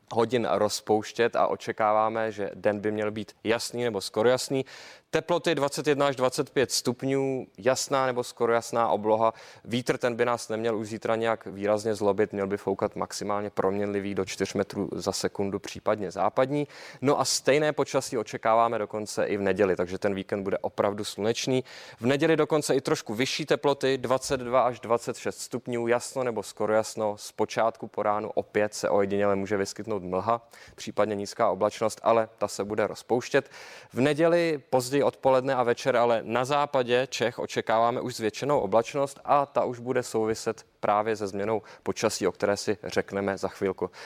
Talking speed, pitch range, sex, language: 165 wpm, 105-130 Hz, male, English